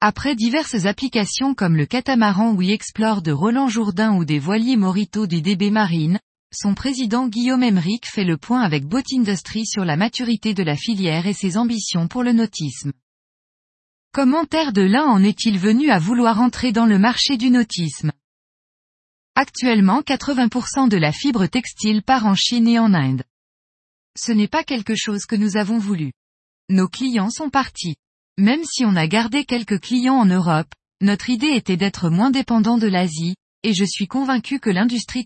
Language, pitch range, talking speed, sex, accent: French, 185-250 Hz, 175 wpm, female, French